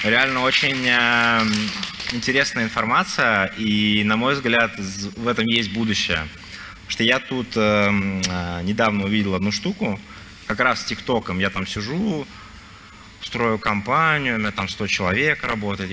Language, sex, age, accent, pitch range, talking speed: Russian, male, 20-39, native, 95-120 Hz, 135 wpm